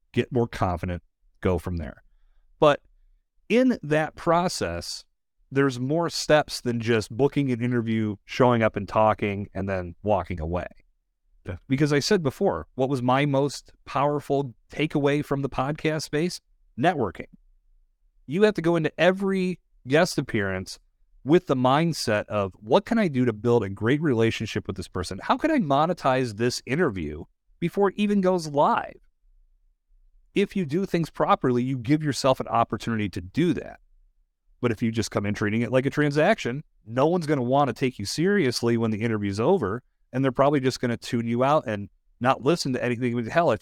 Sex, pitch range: male, 105-150 Hz